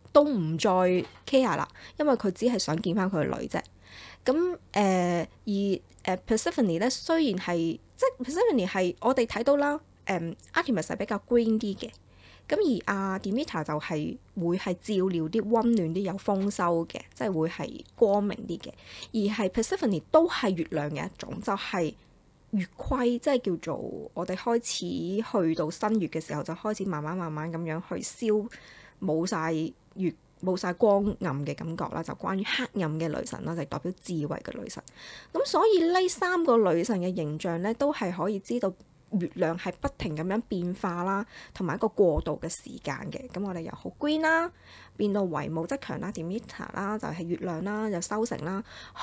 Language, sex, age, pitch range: Chinese, female, 20-39, 175-240 Hz